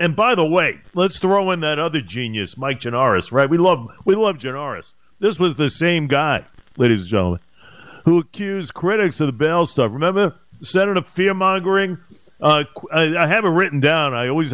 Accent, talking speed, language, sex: American, 185 wpm, English, male